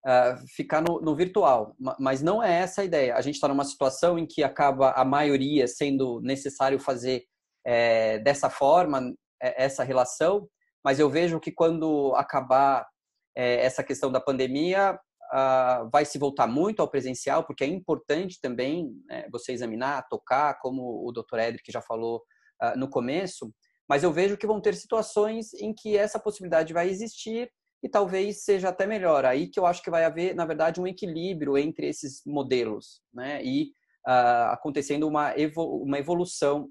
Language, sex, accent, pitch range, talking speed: Portuguese, male, Brazilian, 135-180 Hz, 170 wpm